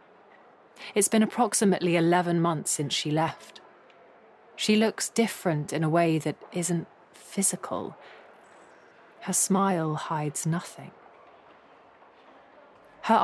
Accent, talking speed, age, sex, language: British, 100 wpm, 30-49, female, English